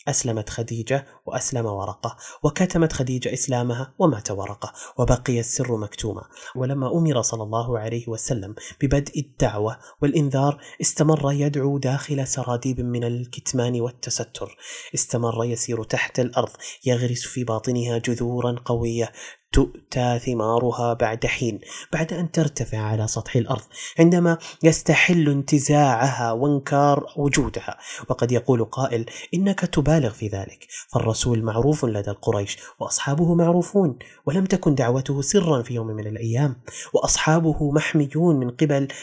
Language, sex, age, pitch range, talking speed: Arabic, male, 30-49, 115-145 Hz, 120 wpm